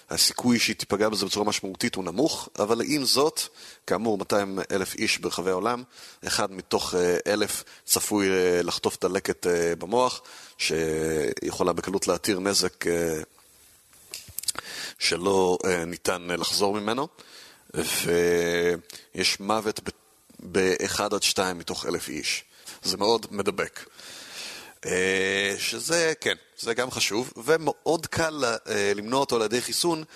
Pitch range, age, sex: 90-125 Hz, 30-49, male